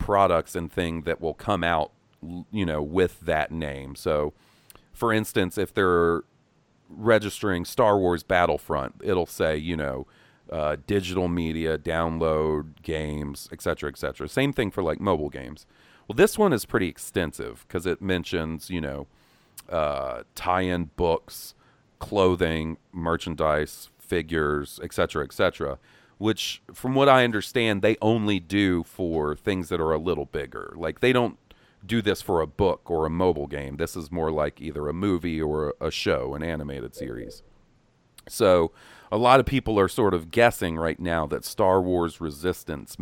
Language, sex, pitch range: English, male, 75-95 Hz